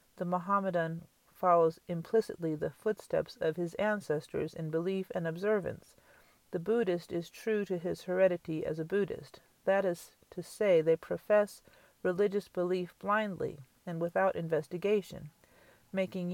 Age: 40-59